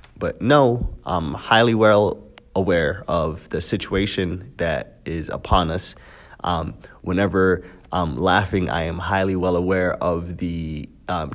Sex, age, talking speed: male, 30-49, 130 wpm